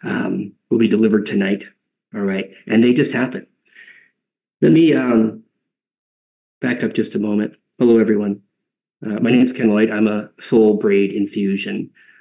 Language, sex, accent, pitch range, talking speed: English, male, American, 105-115 Hz, 150 wpm